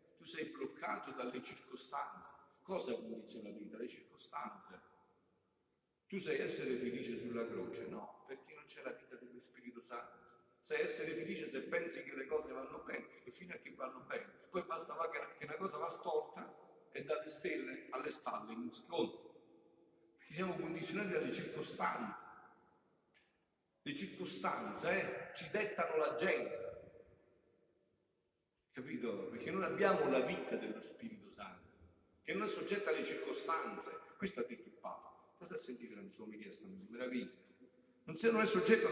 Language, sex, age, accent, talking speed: Italian, male, 50-69, native, 155 wpm